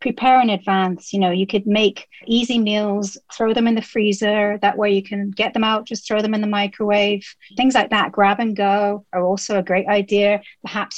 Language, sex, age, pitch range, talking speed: English, female, 40-59, 200-230 Hz, 220 wpm